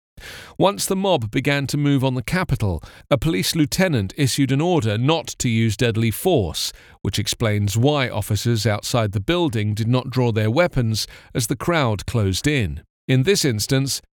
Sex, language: male, English